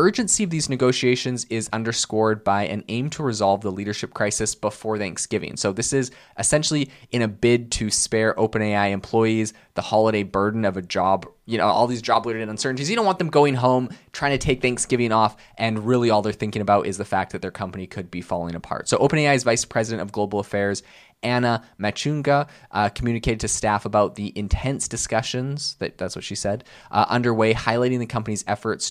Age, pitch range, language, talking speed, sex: 20-39, 100-125 Hz, English, 195 wpm, male